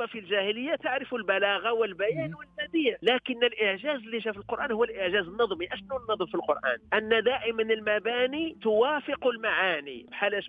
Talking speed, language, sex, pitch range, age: 135 wpm, Arabic, male, 175-230 Hz, 40-59